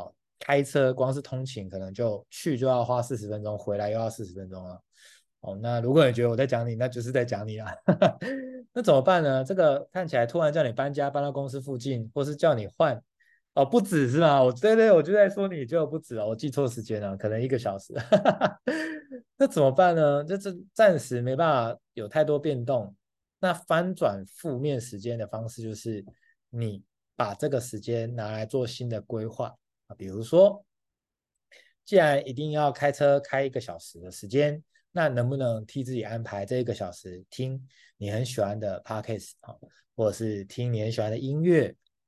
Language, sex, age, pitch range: Chinese, male, 20-39, 110-145 Hz